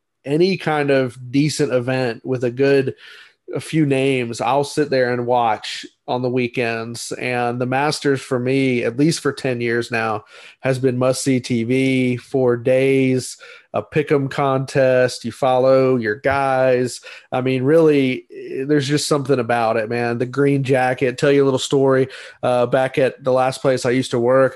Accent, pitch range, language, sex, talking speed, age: American, 125-140 Hz, English, male, 175 wpm, 30-49